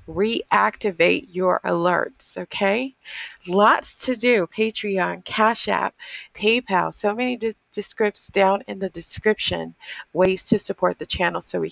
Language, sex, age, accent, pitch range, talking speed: English, female, 40-59, American, 185-260 Hz, 135 wpm